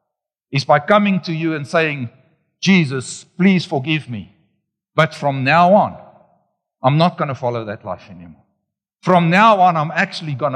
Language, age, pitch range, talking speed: English, 60-79, 120-160 Hz, 165 wpm